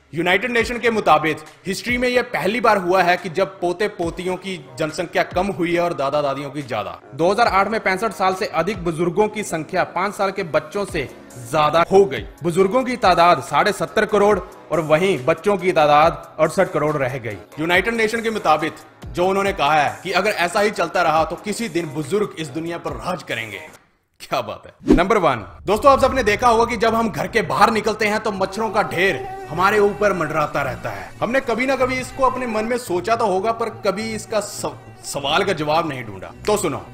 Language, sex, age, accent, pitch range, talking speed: Hindi, male, 30-49, native, 155-205 Hz, 210 wpm